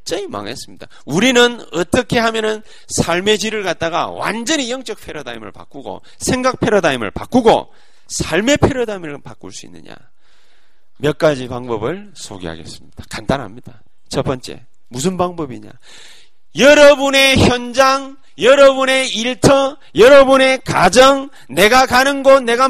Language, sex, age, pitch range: Korean, male, 40-59, 170-270 Hz